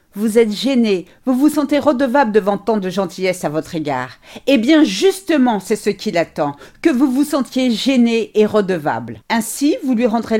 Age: 50-69